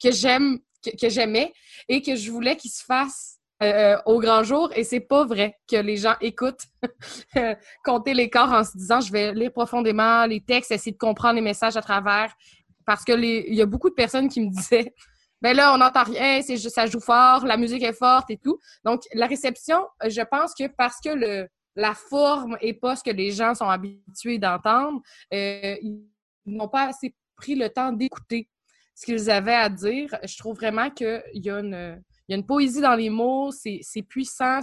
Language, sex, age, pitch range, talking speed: French, female, 20-39, 210-255 Hz, 200 wpm